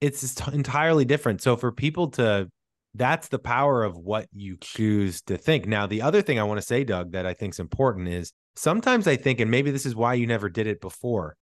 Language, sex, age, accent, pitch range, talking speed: English, male, 20-39, American, 105-140 Hz, 230 wpm